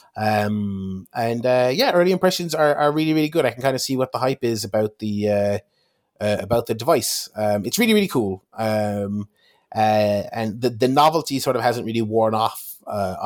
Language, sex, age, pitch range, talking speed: English, male, 30-49, 100-130 Hz, 205 wpm